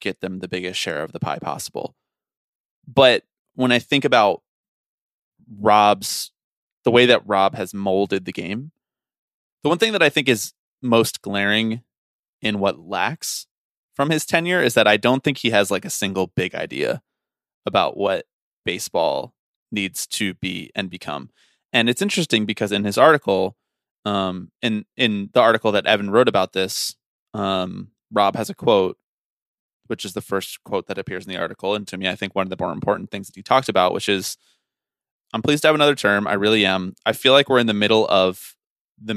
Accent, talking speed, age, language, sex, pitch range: American, 190 wpm, 20-39, English, male, 95-115 Hz